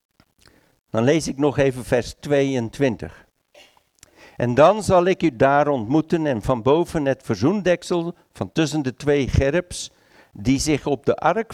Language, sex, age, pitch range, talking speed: Dutch, male, 60-79, 135-175 Hz, 150 wpm